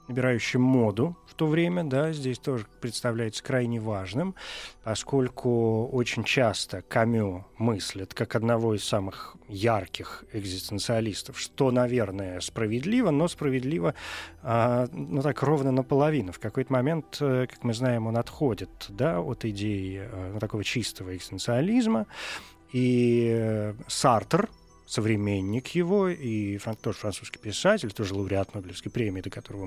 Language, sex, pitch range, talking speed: Russian, male, 105-135 Hz, 120 wpm